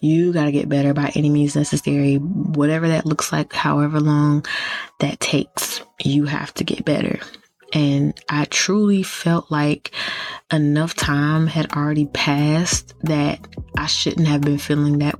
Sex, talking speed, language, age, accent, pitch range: female, 155 wpm, English, 20-39, American, 145-160 Hz